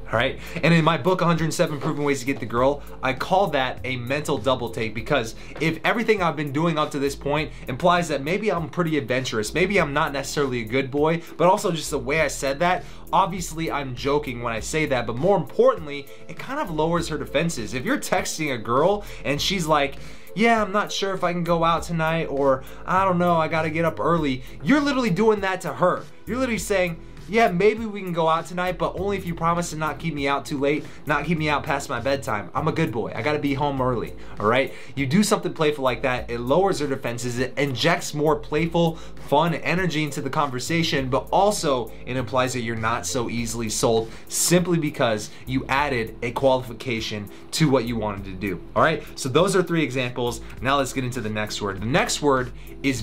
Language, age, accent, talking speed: English, 20-39, American, 225 wpm